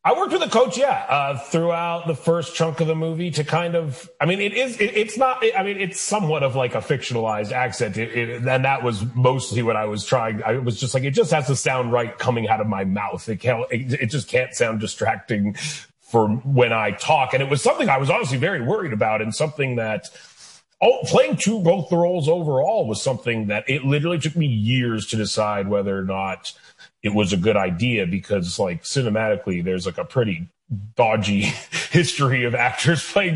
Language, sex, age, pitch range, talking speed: English, male, 30-49, 110-165 Hz, 215 wpm